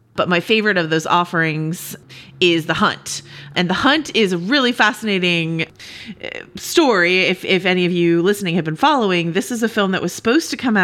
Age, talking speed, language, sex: 30-49, 195 wpm, English, female